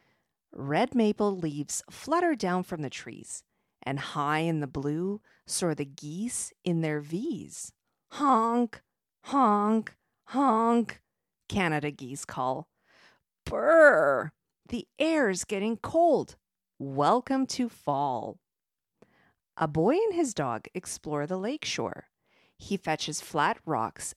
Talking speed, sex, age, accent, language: 115 wpm, female, 40-59, American, English